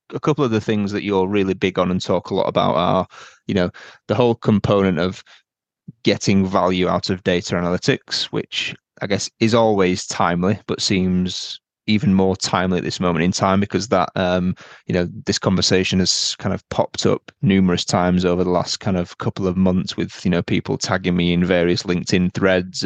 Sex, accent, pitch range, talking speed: male, British, 90-110 Hz, 200 wpm